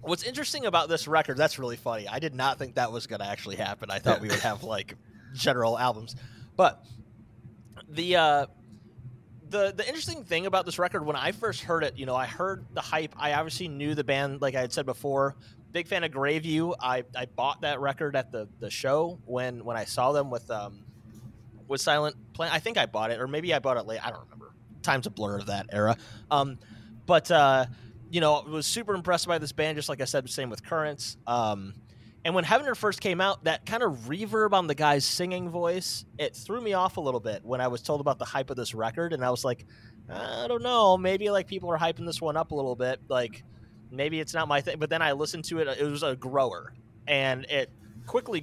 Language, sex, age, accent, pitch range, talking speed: English, male, 30-49, American, 120-160 Hz, 235 wpm